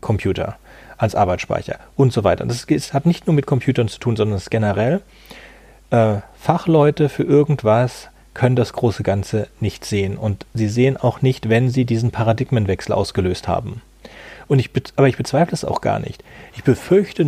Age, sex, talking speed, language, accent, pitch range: 40-59, male, 170 wpm, German, German, 115-145 Hz